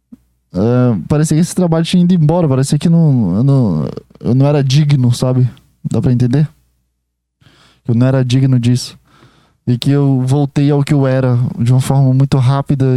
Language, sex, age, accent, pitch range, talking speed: Portuguese, male, 10-29, Brazilian, 130-160 Hz, 180 wpm